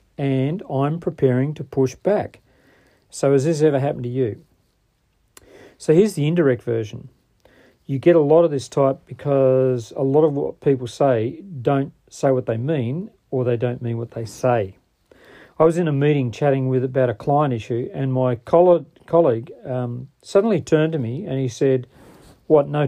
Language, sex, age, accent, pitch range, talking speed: English, male, 40-59, Australian, 125-155 Hz, 180 wpm